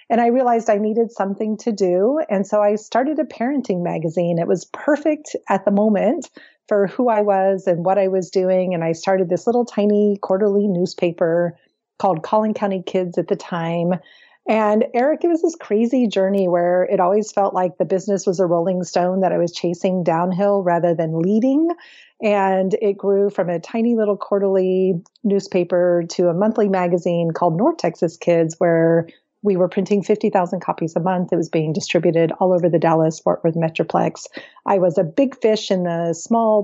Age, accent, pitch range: 30-49, American, 175-210 Hz